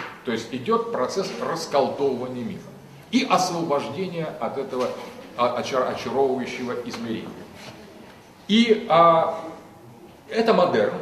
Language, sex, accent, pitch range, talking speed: Russian, male, native, 165-225 Hz, 85 wpm